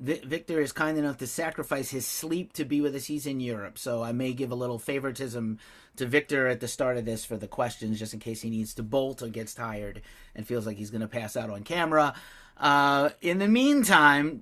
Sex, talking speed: male, 235 wpm